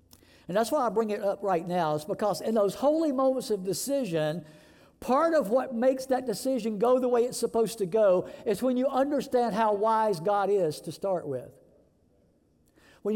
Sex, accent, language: male, American, English